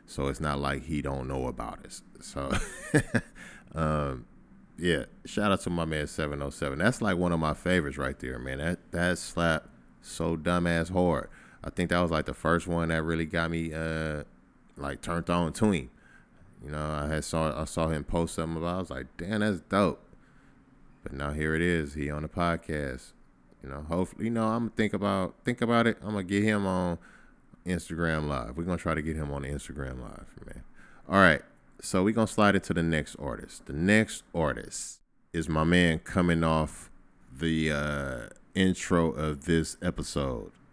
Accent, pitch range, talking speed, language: American, 75-90 Hz, 195 wpm, English